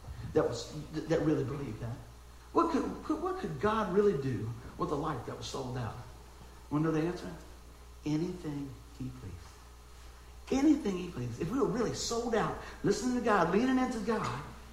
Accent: American